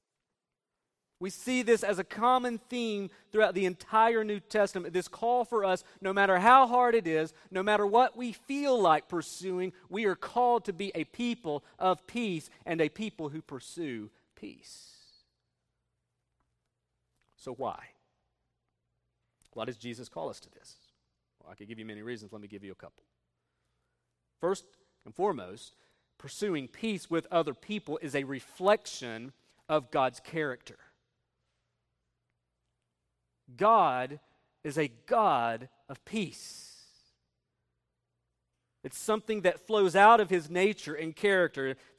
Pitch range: 125-205 Hz